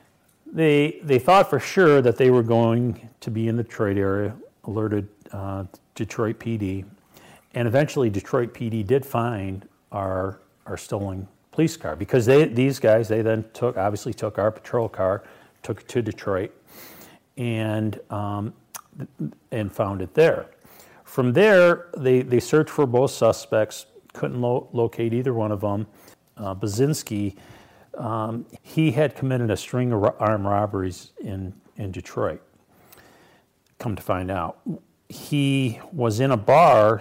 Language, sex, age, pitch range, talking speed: English, male, 40-59, 100-120 Hz, 150 wpm